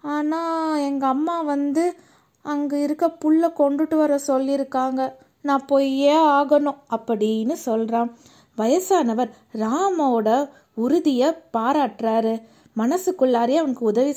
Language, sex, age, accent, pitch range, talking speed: Tamil, female, 20-39, native, 230-300 Hz, 95 wpm